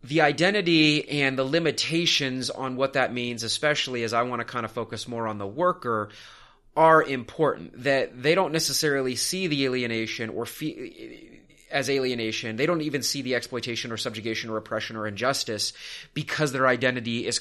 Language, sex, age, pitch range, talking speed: English, male, 30-49, 110-145 Hz, 170 wpm